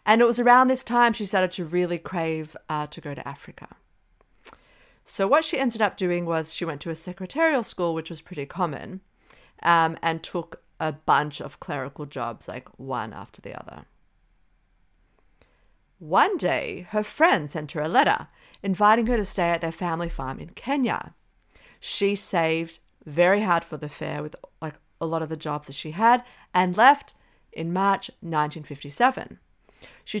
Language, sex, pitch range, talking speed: English, female, 155-205 Hz, 175 wpm